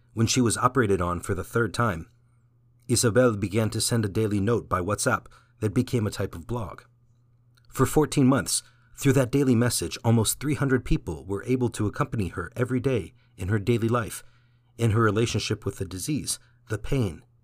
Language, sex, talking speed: English, male, 180 wpm